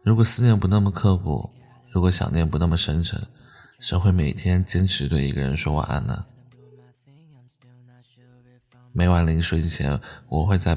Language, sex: Chinese, male